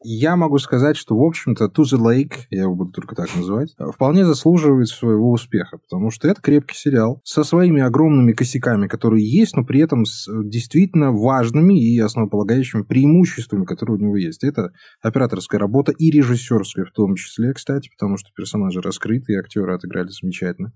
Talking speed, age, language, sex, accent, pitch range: 175 wpm, 20-39, Russian, male, native, 105-145 Hz